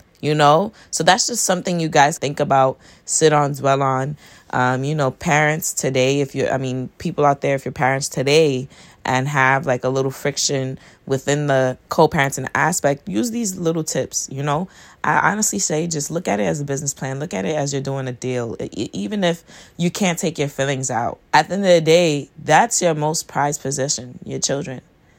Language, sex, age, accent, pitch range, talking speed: English, female, 20-39, American, 140-185 Hz, 205 wpm